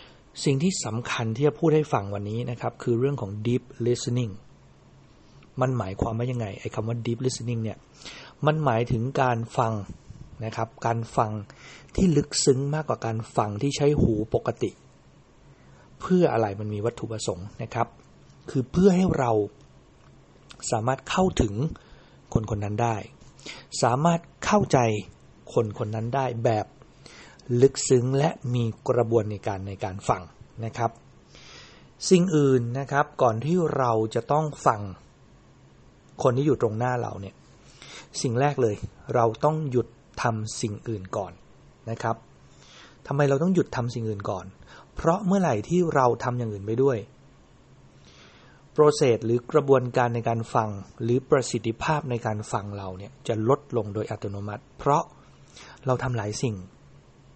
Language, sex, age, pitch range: English, male, 60-79, 110-135 Hz